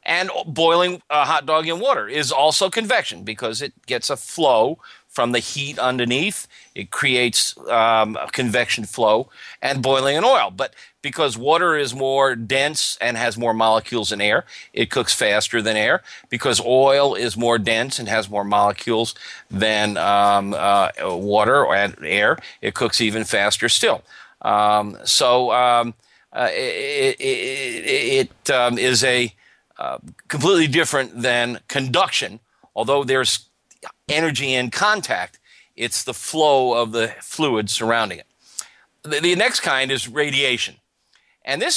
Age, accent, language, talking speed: 50-69, American, English, 145 wpm